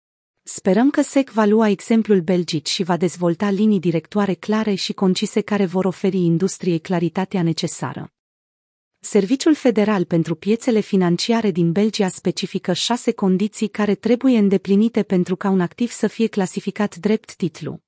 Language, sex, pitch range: Romanian, female, 180-220 Hz